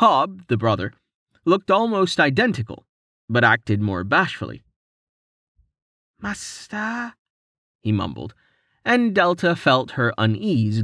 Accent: American